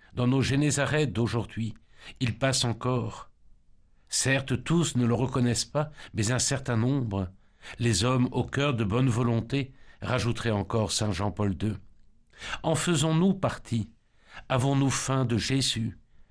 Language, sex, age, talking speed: French, male, 60-79, 130 wpm